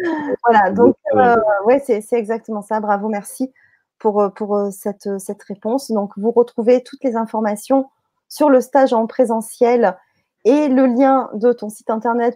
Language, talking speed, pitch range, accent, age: French, 155 wpm, 215-260 Hz, French, 30-49